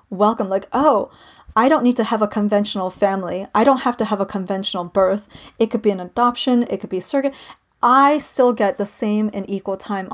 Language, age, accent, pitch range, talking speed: English, 30-49, American, 195-250 Hz, 220 wpm